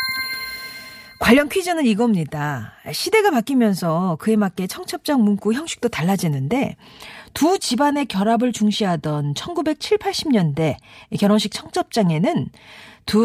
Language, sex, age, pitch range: Korean, female, 40-59, 175-260 Hz